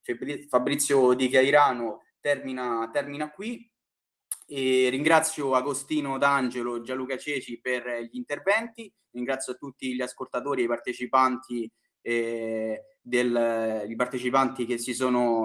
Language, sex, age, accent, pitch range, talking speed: Italian, male, 20-39, native, 125-160 Hz, 115 wpm